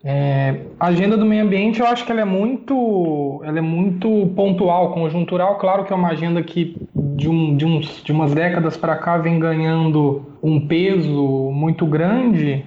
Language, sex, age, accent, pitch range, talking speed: Portuguese, male, 20-39, Brazilian, 150-205 Hz, 180 wpm